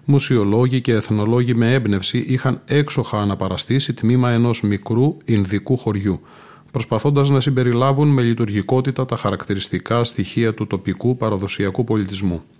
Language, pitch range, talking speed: Greek, 110-130 Hz, 120 wpm